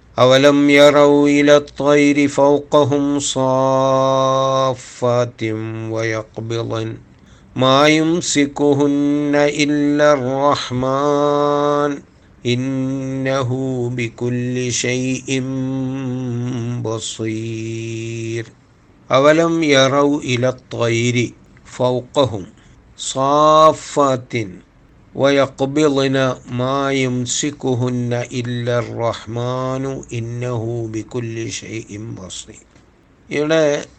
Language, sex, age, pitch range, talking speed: Malayalam, male, 50-69, 120-145 Hz, 40 wpm